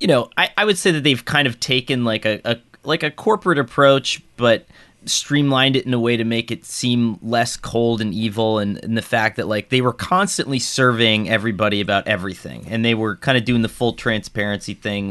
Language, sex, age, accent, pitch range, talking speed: English, male, 30-49, American, 100-125 Hz, 220 wpm